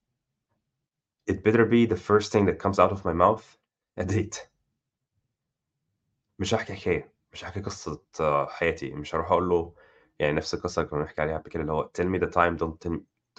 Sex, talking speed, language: male, 160 wpm, Arabic